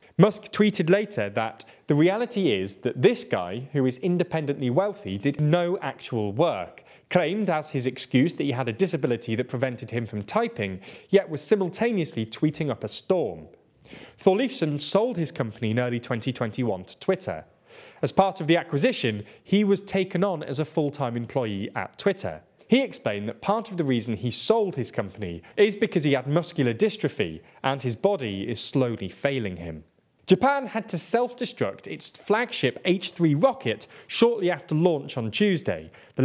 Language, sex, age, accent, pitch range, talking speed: English, male, 20-39, British, 125-195 Hz, 165 wpm